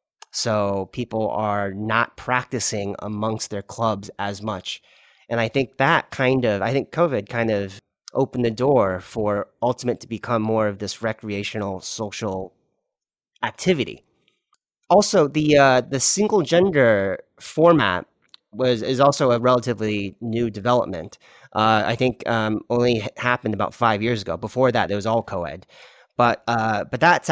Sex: male